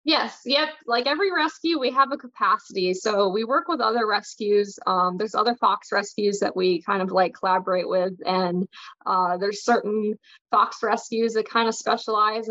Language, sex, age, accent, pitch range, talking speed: English, female, 20-39, American, 185-225 Hz, 180 wpm